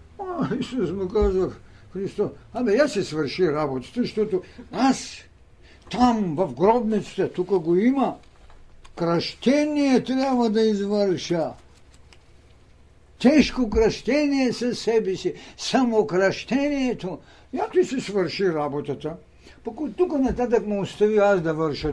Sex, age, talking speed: male, 60-79, 115 wpm